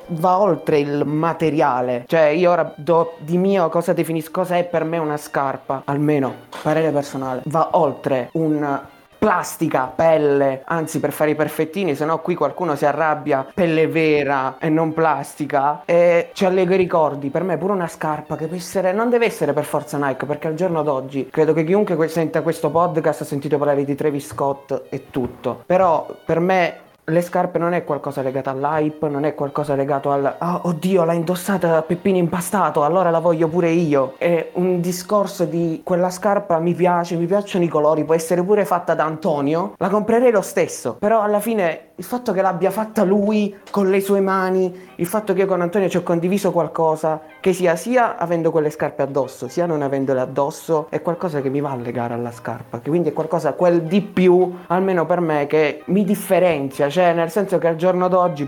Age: 20-39